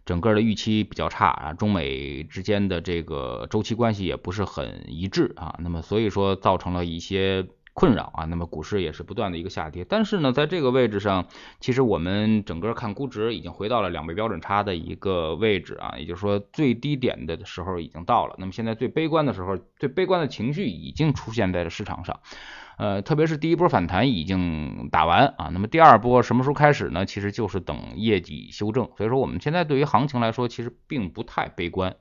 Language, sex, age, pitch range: Chinese, male, 20-39, 90-125 Hz